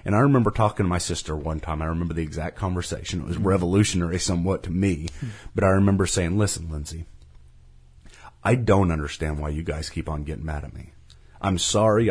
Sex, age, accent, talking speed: male, 30-49, American, 200 wpm